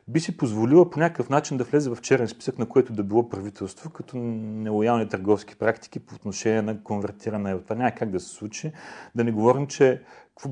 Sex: male